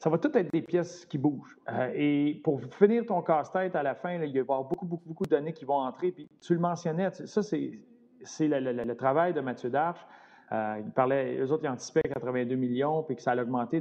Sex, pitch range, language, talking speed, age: male, 145-195 Hz, French, 250 wpm, 40-59